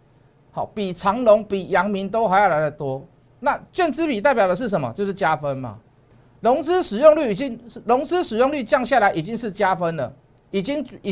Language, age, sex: Chinese, 50-69, male